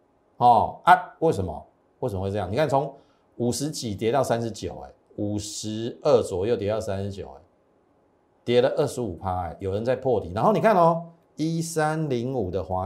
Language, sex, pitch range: Chinese, male, 105-175 Hz